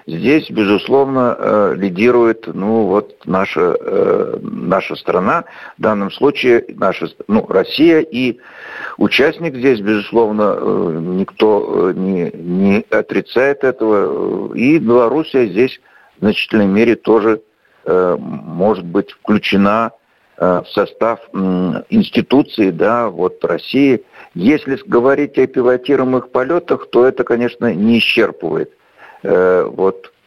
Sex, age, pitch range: male, 60-79, 105-155 Hz